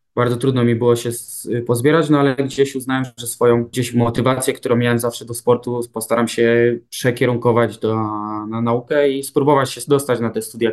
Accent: native